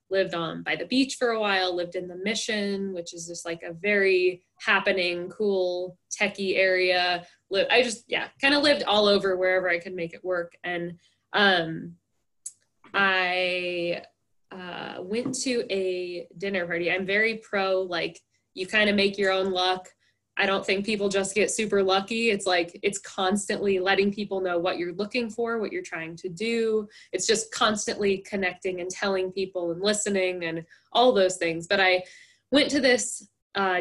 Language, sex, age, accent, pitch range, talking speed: English, female, 10-29, American, 180-220 Hz, 175 wpm